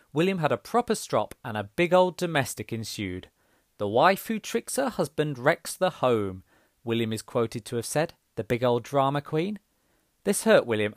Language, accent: English, British